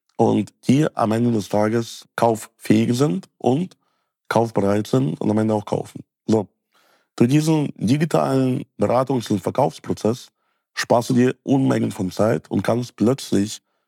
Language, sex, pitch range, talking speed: German, male, 105-125 Hz, 145 wpm